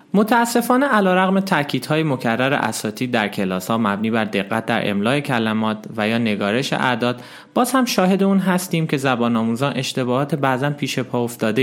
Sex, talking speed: male, 160 wpm